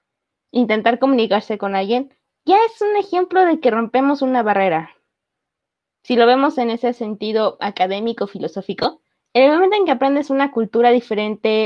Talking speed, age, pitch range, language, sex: 155 wpm, 20-39, 220-290 Hz, Spanish, female